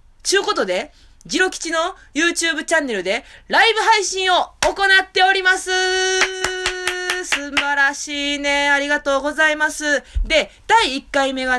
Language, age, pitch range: Japanese, 20-39, 200-295 Hz